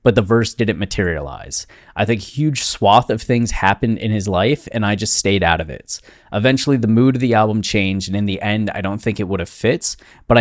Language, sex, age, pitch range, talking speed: English, male, 20-39, 95-115 Hz, 235 wpm